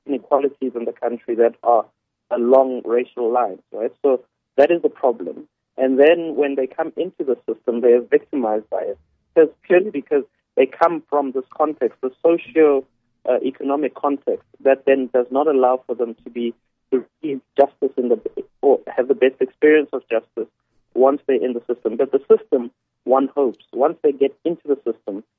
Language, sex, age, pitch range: English, male, 30-49, 125-160 Hz